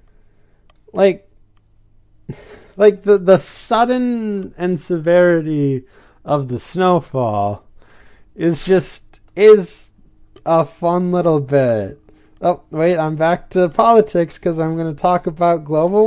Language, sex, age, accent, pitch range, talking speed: English, male, 20-39, American, 115-175 Hz, 110 wpm